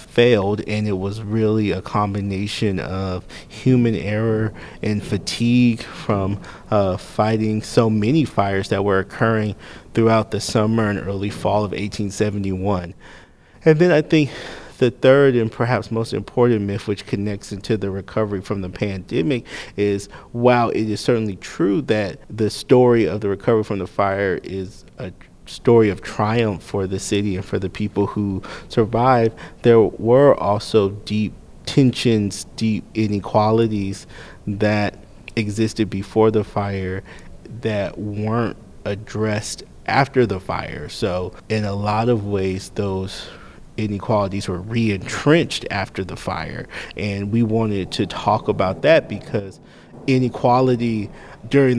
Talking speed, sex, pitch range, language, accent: 135 wpm, male, 100-115 Hz, English, American